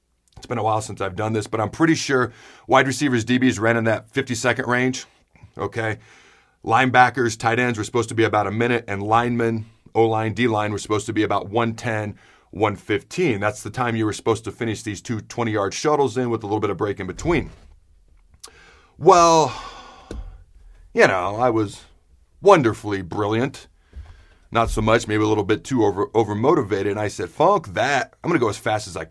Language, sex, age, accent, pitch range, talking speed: English, male, 40-59, American, 100-125 Hz, 190 wpm